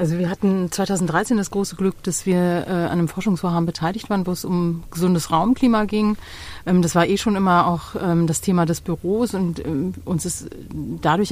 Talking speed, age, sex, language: 200 wpm, 30-49, female, German